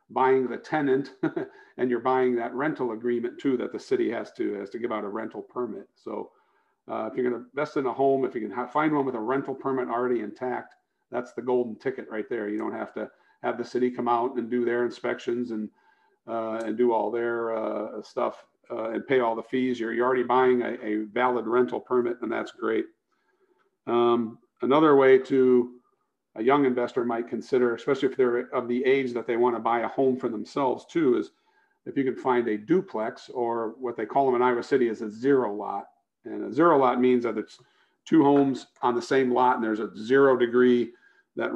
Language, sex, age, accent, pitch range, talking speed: English, male, 50-69, American, 120-135 Hz, 220 wpm